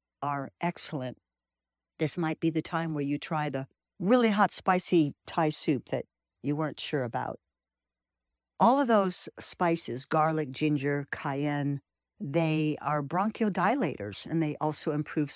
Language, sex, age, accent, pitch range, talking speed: English, female, 60-79, American, 140-175 Hz, 135 wpm